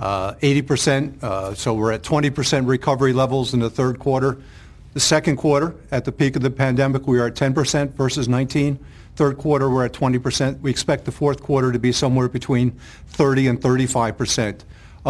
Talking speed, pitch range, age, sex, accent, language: 180 wpm, 120-140 Hz, 50-69, male, American, English